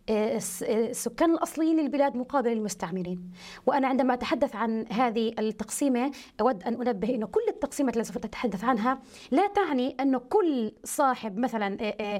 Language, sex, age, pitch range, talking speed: Arabic, female, 30-49, 220-280 Hz, 135 wpm